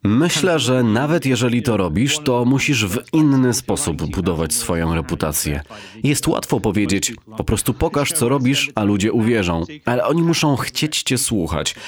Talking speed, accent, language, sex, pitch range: 155 wpm, native, Polish, male, 95-125 Hz